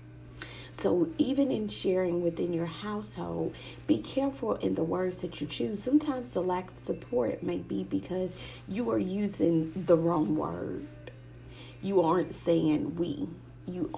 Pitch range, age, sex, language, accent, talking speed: 145-190 Hz, 40-59, female, English, American, 145 wpm